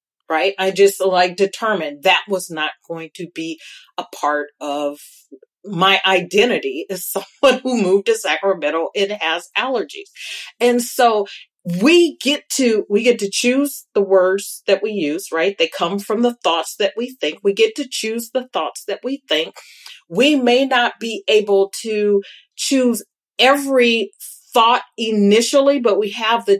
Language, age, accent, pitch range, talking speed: English, 40-59, American, 180-240 Hz, 160 wpm